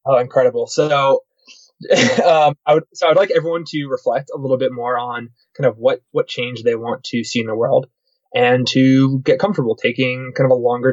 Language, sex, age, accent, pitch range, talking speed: English, male, 20-39, American, 120-145 Hz, 210 wpm